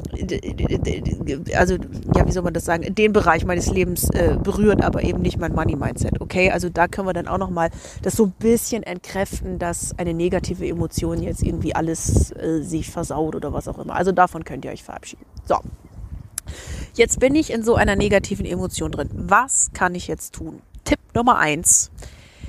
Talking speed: 185 wpm